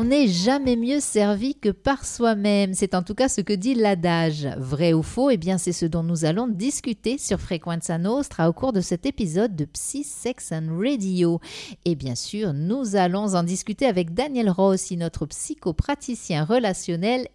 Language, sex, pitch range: French, female, 165-220 Hz